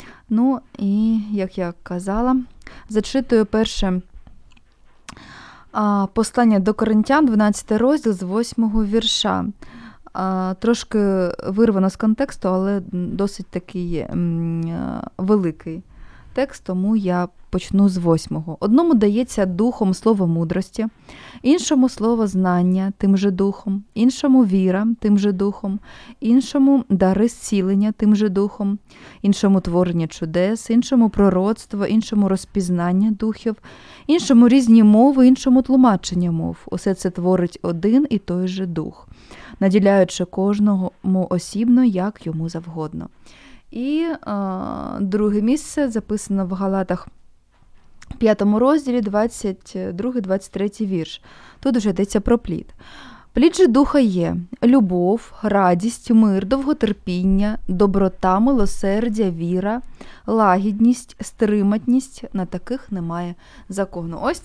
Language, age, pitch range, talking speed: Ukrainian, 20-39, 190-235 Hz, 105 wpm